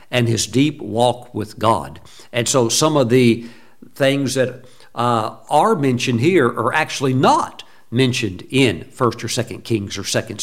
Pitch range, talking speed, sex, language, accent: 115-135 Hz, 160 wpm, male, English, American